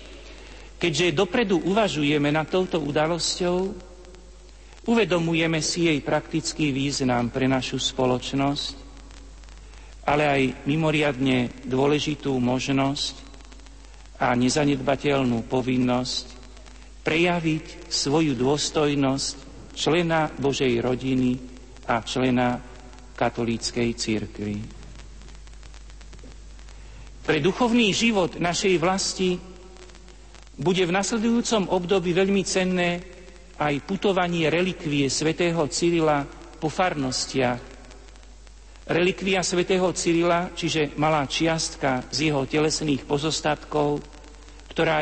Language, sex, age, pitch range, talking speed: Slovak, male, 60-79, 135-175 Hz, 80 wpm